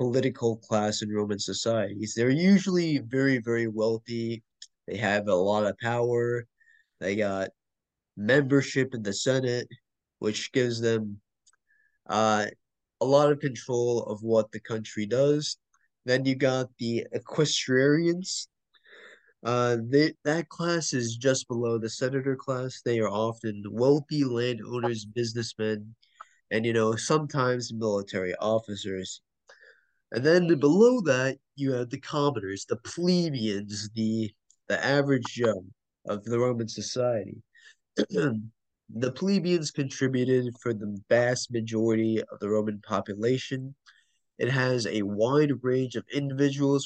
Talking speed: 125 wpm